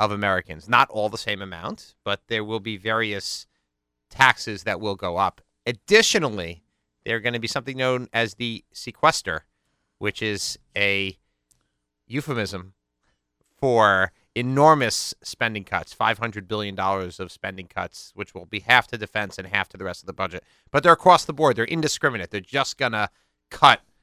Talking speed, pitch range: 165 wpm, 90-125 Hz